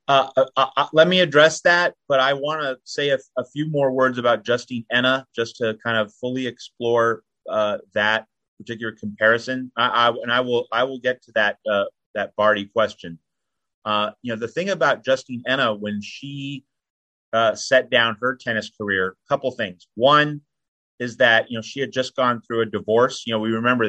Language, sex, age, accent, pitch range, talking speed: English, male, 30-49, American, 105-130 Hz, 200 wpm